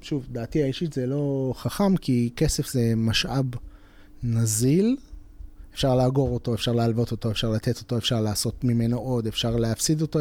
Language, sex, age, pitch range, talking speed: Hebrew, male, 30-49, 115-155 Hz, 160 wpm